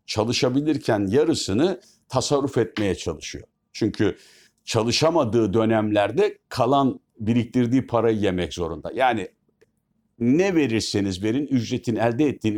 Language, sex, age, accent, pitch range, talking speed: Turkish, male, 60-79, native, 100-130 Hz, 95 wpm